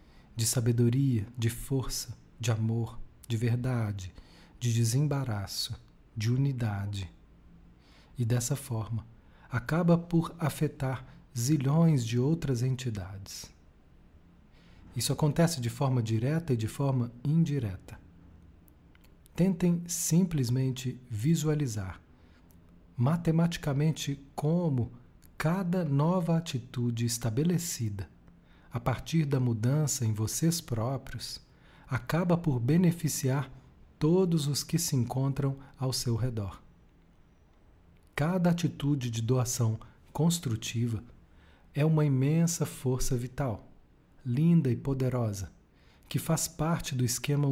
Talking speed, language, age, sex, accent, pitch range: 95 wpm, Portuguese, 40-59, male, Brazilian, 110-150 Hz